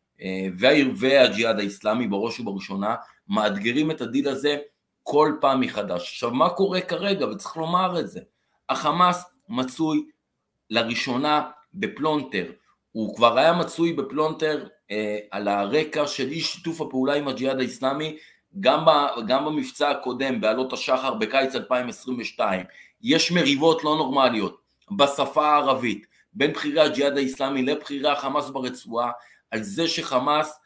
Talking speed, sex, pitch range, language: 120 wpm, male, 130-165 Hz, Hebrew